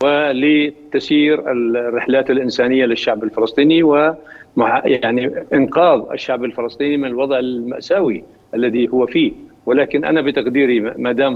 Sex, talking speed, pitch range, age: male, 110 wpm, 125-150 Hz, 50-69